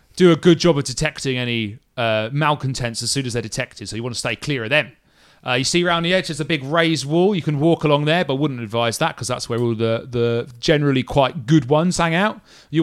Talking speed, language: 260 wpm, English